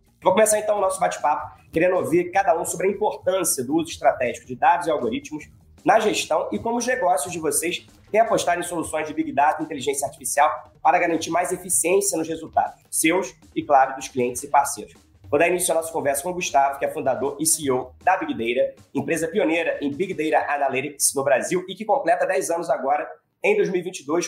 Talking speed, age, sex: 210 wpm, 20-39, male